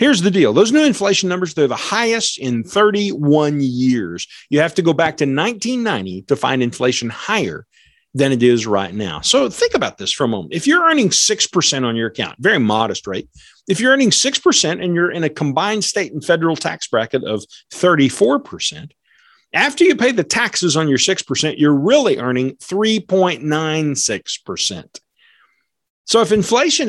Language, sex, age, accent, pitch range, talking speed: English, male, 40-59, American, 140-210 Hz, 170 wpm